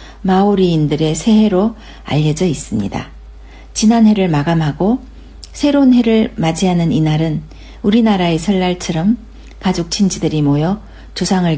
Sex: female